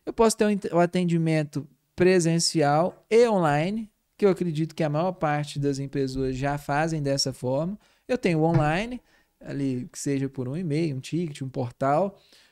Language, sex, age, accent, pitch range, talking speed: Portuguese, male, 20-39, Brazilian, 145-195 Hz, 170 wpm